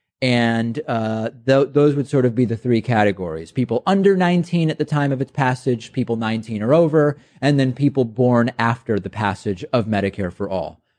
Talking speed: 185 wpm